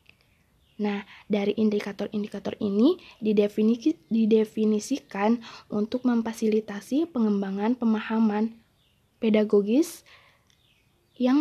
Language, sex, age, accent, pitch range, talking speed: Indonesian, female, 20-39, native, 215-245 Hz, 65 wpm